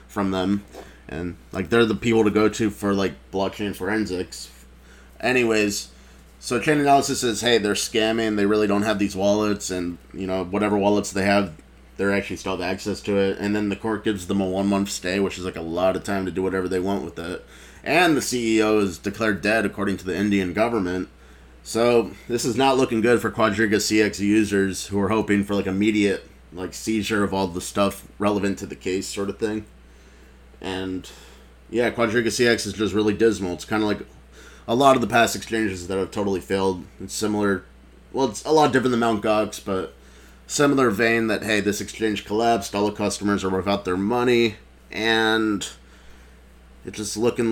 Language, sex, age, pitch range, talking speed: English, male, 20-39, 90-110 Hz, 200 wpm